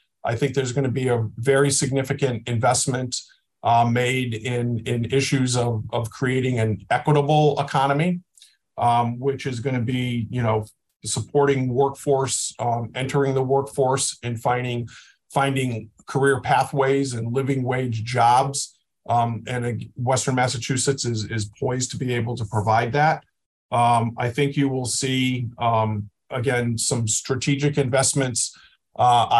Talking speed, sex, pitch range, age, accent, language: 140 wpm, male, 120-140 Hz, 50-69, American, English